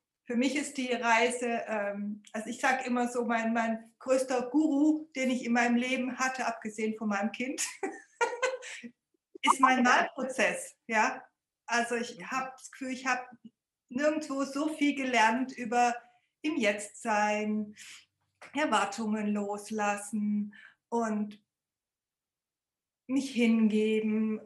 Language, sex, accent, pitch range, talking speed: German, female, German, 220-270 Hz, 120 wpm